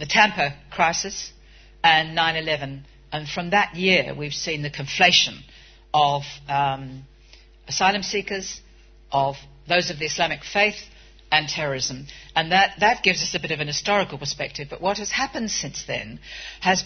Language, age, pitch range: English, 50-69, 150-195 Hz